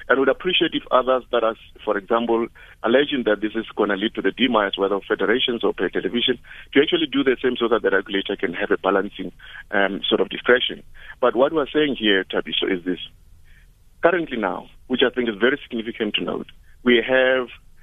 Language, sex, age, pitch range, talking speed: English, male, 50-69, 105-140 Hz, 205 wpm